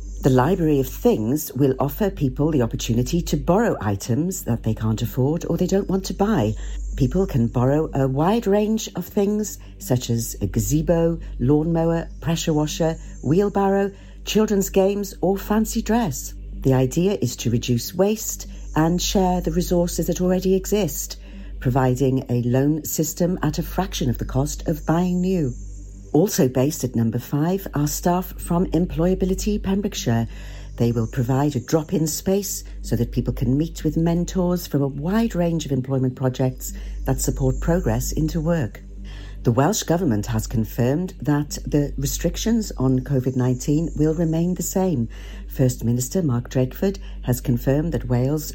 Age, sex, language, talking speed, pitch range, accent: 50-69, female, English, 155 wpm, 125-170 Hz, British